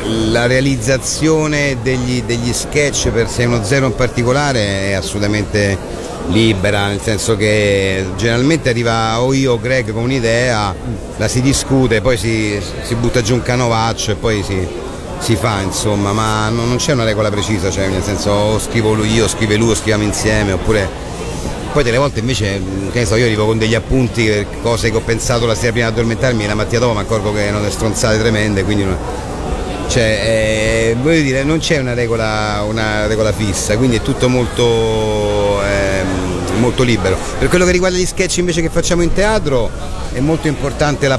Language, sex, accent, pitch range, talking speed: Italian, male, native, 105-130 Hz, 180 wpm